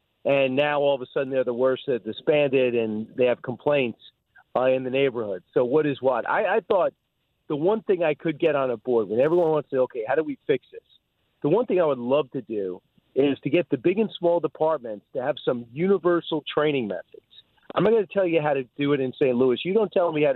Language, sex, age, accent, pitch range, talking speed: English, male, 40-59, American, 135-185 Hz, 255 wpm